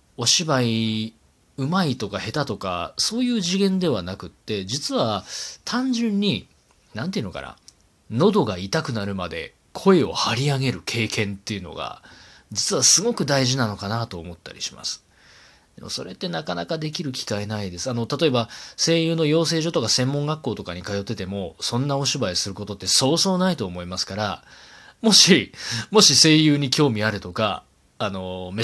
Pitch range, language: 100-160 Hz, Japanese